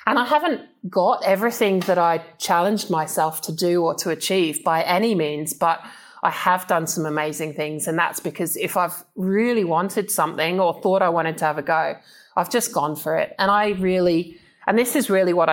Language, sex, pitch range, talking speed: English, male, 165-200 Hz, 205 wpm